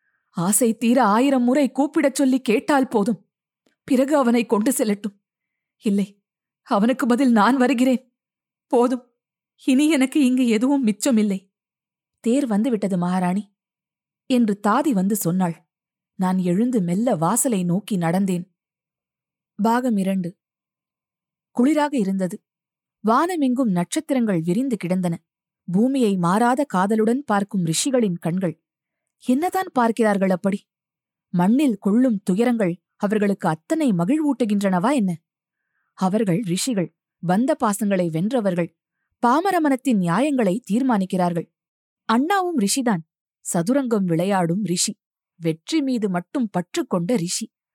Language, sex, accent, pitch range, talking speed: Tamil, female, native, 180-250 Hz, 100 wpm